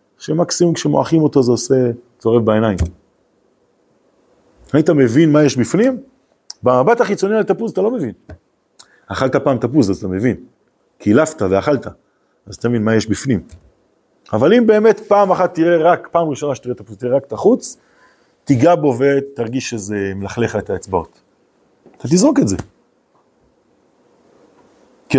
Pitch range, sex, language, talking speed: 120-175 Hz, male, Hebrew, 145 wpm